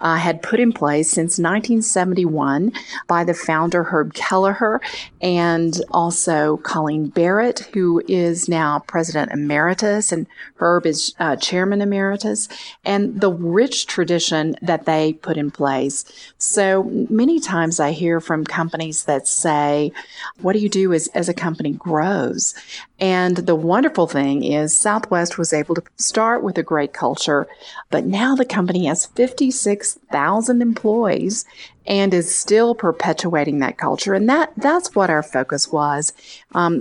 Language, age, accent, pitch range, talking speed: English, 40-59, American, 160-205 Hz, 145 wpm